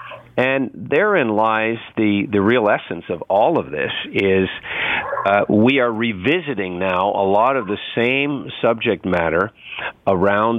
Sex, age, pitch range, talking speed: male, 50-69, 100-120 Hz, 140 wpm